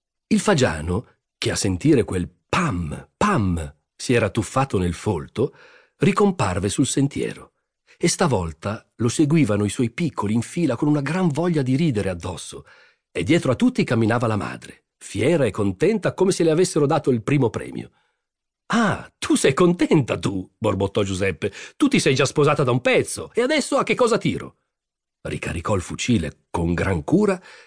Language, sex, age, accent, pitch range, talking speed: Italian, male, 40-59, native, 105-175 Hz, 165 wpm